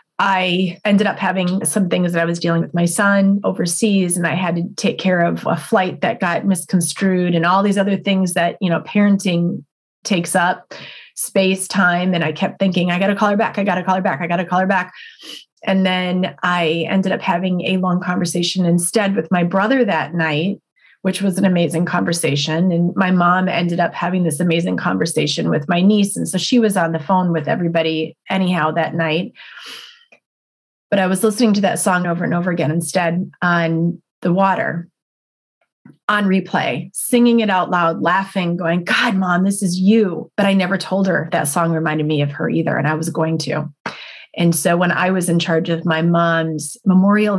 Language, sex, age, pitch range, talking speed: English, female, 30-49, 170-195 Hz, 205 wpm